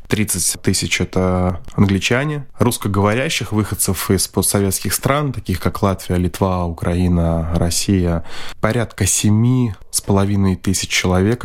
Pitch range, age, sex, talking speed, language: 90-105 Hz, 20-39, male, 110 wpm, Russian